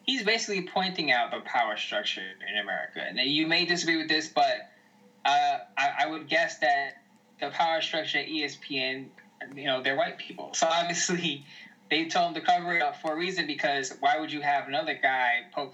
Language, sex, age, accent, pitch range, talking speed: English, male, 10-29, American, 135-180 Hz, 200 wpm